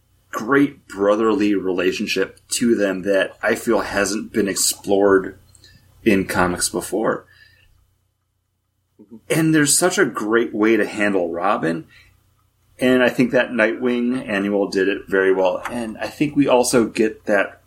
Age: 30-49